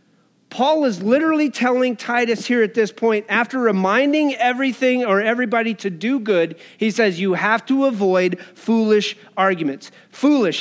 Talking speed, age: 145 wpm, 30-49